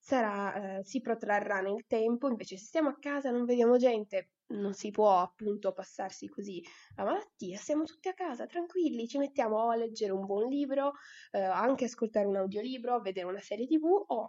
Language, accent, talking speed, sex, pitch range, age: Italian, native, 195 wpm, female, 195-255 Hz, 20-39